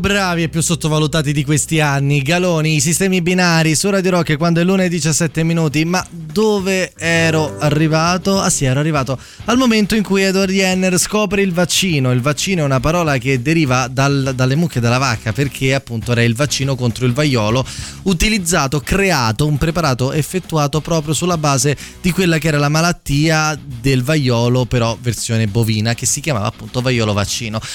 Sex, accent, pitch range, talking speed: male, native, 125-175 Hz, 180 wpm